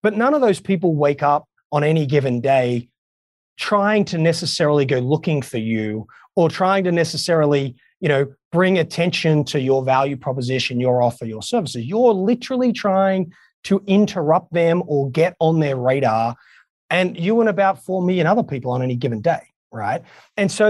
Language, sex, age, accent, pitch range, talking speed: English, male, 30-49, Australian, 130-180 Hz, 175 wpm